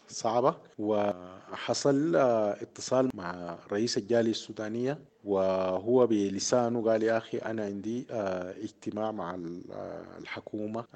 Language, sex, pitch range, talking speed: English, male, 95-125 Hz, 95 wpm